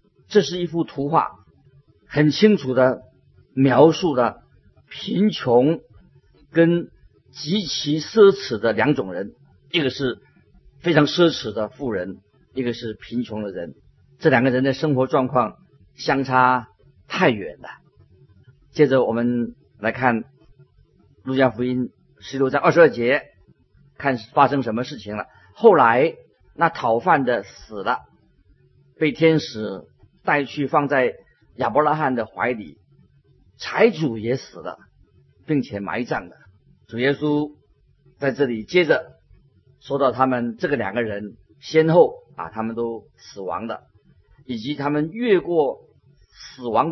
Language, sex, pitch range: Chinese, male, 115-150 Hz